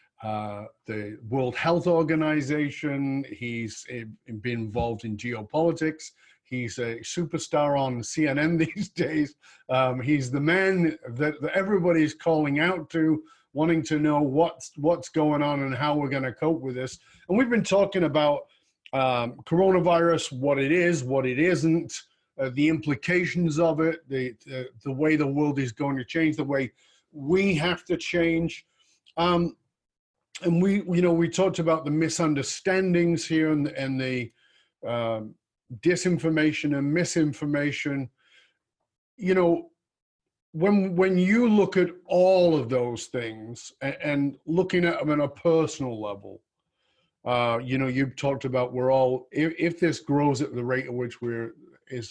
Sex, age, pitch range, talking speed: male, 50-69, 130-165 Hz, 150 wpm